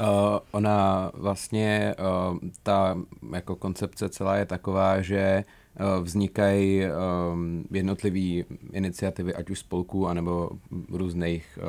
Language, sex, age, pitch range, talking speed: Czech, male, 30-49, 85-95 Hz, 85 wpm